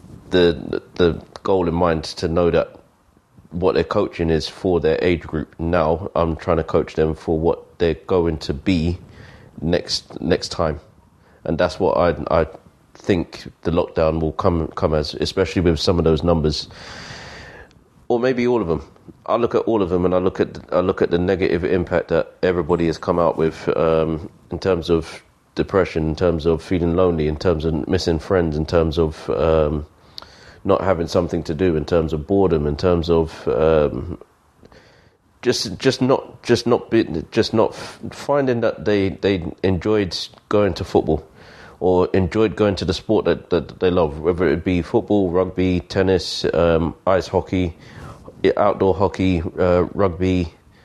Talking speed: 175 wpm